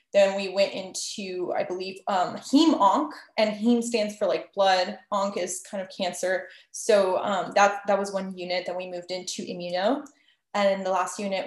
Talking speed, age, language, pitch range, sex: 185 wpm, 20-39, English, 185-245 Hz, female